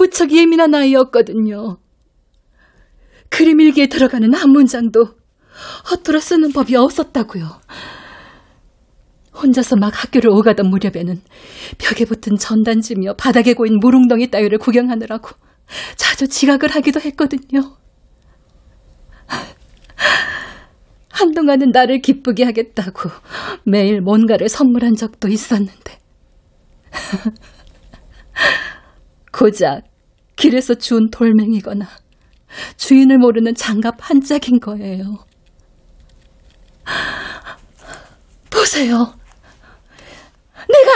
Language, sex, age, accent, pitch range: Korean, female, 30-49, native, 225-335 Hz